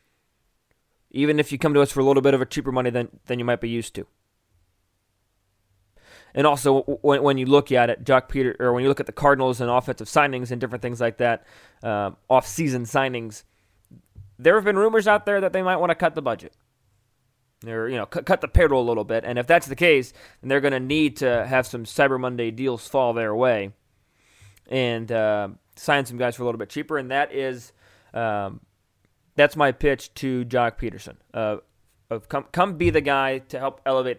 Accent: American